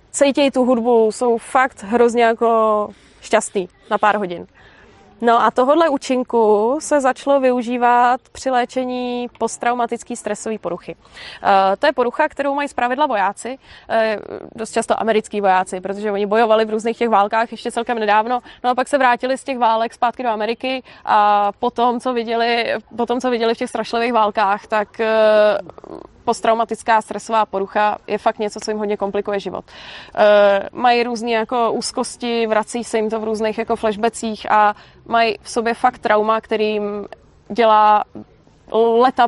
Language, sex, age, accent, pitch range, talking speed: Czech, female, 20-39, native, 220-255 Hz, 160 wpm